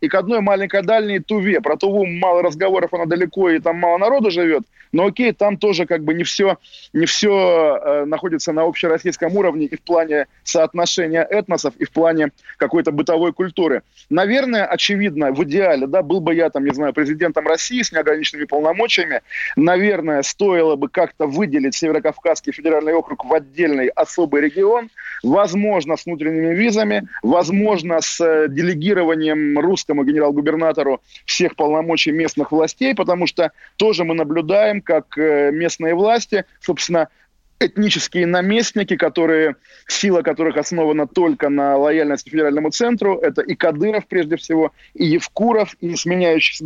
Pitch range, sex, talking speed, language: 155-195 Hz, male, 145 wpm, Russian